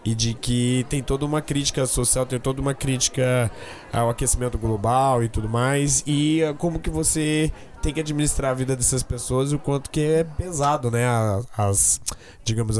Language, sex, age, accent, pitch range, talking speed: Portuguese, male, 20-39, Brazilian, 125-150 Hz, 185 wpm